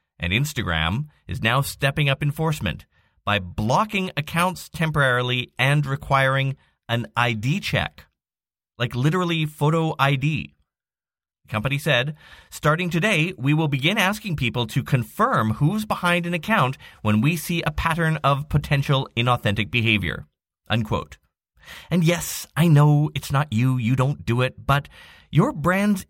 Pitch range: 110-160 Hz